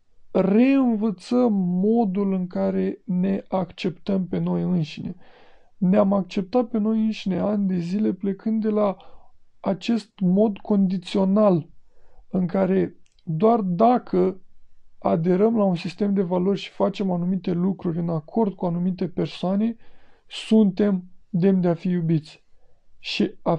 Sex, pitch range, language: male, 185-220 Hz, Romanian